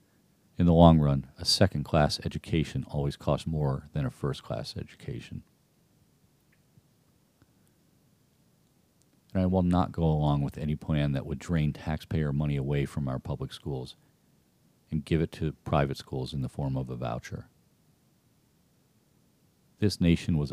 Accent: American